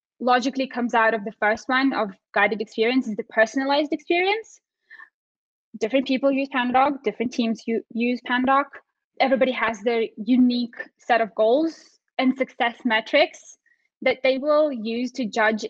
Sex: female